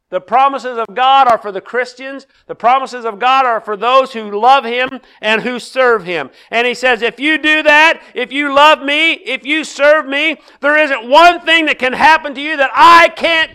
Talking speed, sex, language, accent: 215 wpm, male, English, American